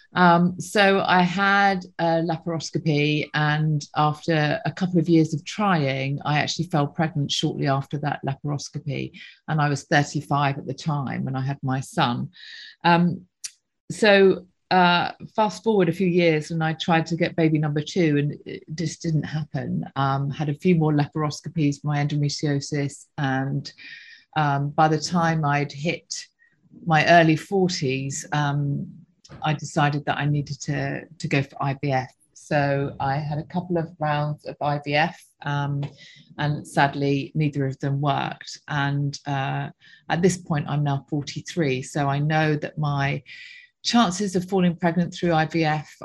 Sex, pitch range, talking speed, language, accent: female, 145-170 Hz, 155 wpm, English, British